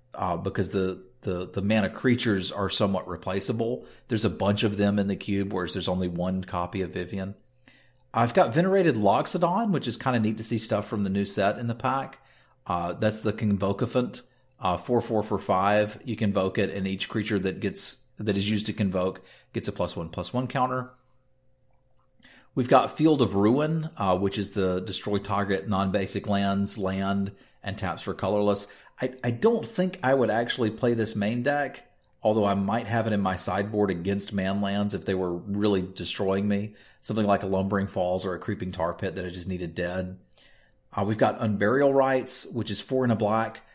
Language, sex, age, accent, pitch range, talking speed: English, male, 40-59, American, 95-120 Hz, 200 wpm